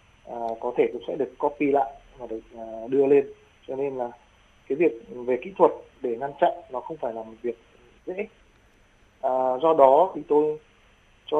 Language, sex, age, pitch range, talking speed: Vietnamese, male, 20-39, 115-150 Hz, 195 wpm